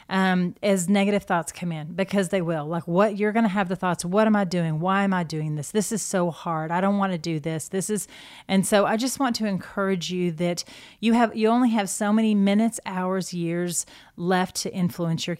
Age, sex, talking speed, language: 30-49, female, 240 wpm, English